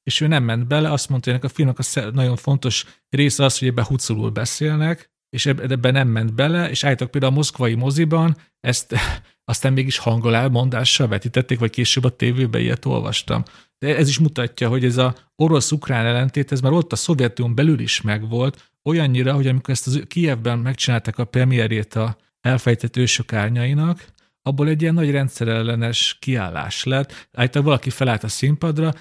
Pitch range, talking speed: 115-135 Hz, 170 wpm